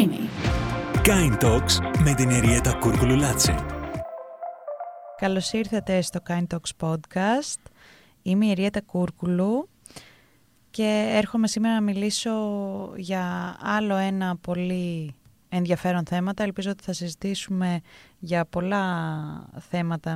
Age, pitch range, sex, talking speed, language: 20-39, 165-210 Hz, female, 100 wpm, Greek